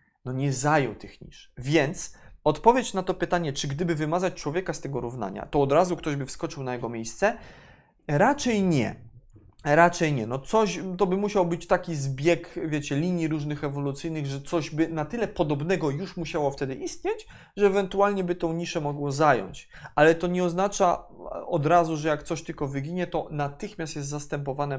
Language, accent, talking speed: Polish, native, 180 wpm